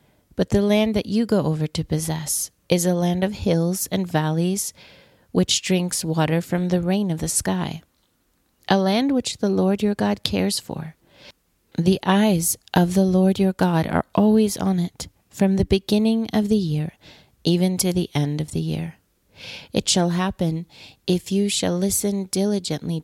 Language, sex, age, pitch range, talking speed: English, female, 40-59, 160-195 Hz, 170 wpm